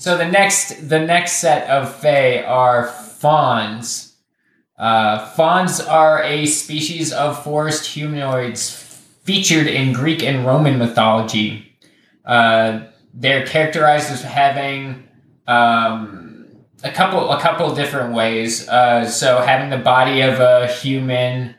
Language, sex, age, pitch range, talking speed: English, male, 20-39, 115-145 Hz, 125 wpm